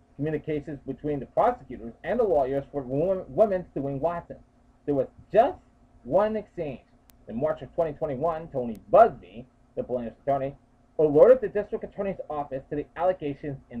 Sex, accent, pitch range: male, American, 125-185 Hz